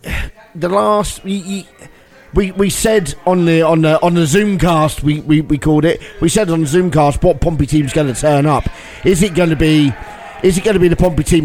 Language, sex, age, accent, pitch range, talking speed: English, male, 40-59, British, 140-175 Hz, 220 wpm